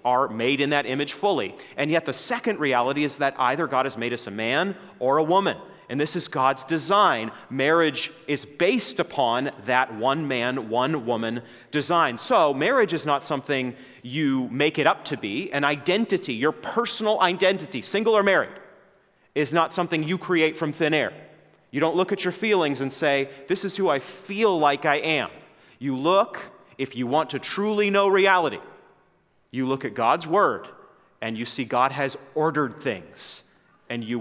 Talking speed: 180 wpm